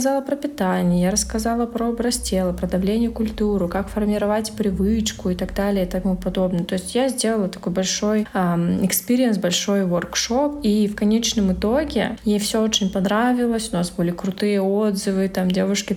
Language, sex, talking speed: Russian, female, 175 wpm